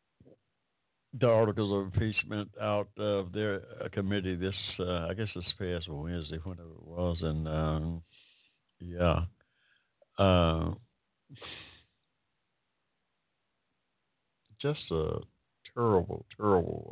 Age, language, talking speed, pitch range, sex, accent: 60-79, English, 95 wpm, 85-100 Hz, male, American